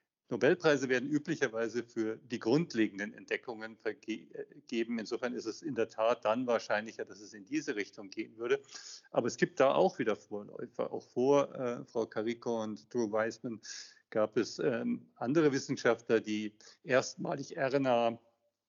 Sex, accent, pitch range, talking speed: male, German, 110-140 Hz, 150 wpm